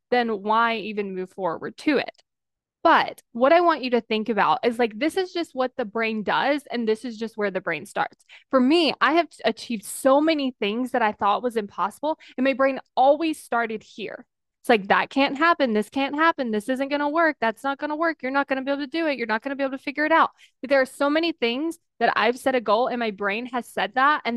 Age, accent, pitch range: 20-39, American, 225-295 Hz